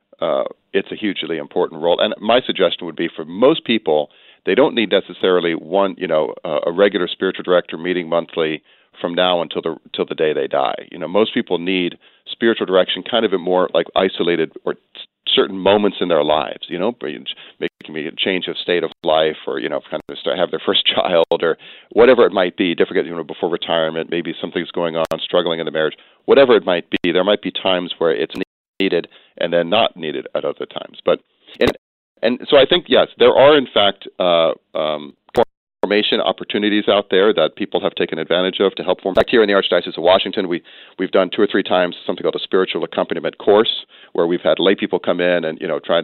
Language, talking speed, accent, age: English, 220 wpm, American, 40-59